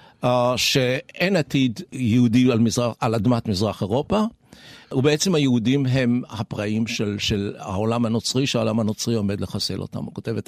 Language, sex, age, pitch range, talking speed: Hebrew, male, 60-79, 115-155 Hz, 145 wpm